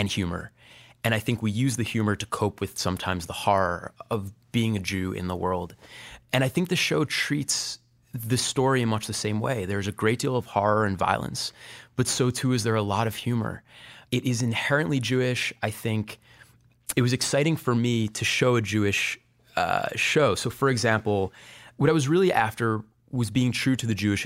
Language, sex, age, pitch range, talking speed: English, male, 20-39, 105-125 Hz, 205 wpm